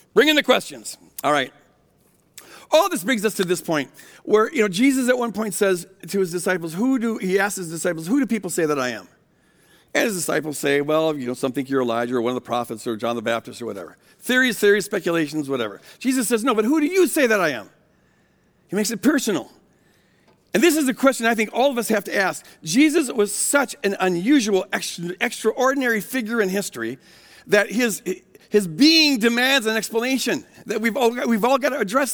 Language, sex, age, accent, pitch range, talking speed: English, male, 50-69, American, 195-270 Hz, 210 wpm